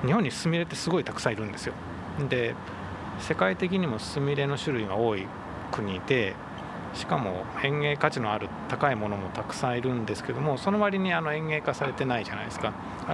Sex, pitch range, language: male, 110-155 Hz, Japanese